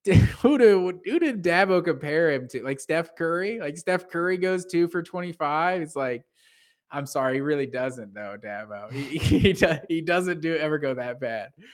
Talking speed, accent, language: 195 wpm, American, English